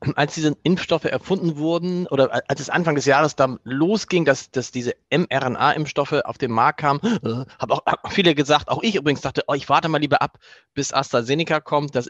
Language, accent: German, German